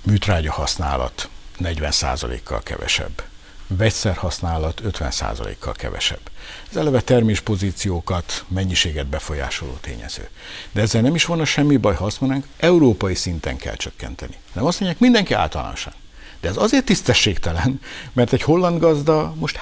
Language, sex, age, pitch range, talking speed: Hungarian, male, 60-79, 85-130 Hz, 120 wpm